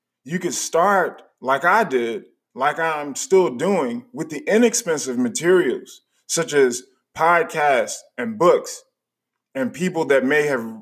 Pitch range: 150-235 Hz